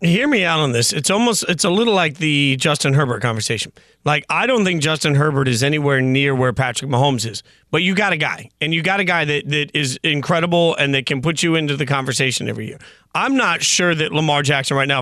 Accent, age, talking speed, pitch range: American, 40-59, 240 wpm, 145-185 Hz